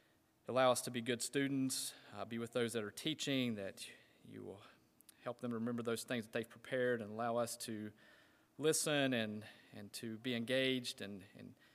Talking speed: 185 wpm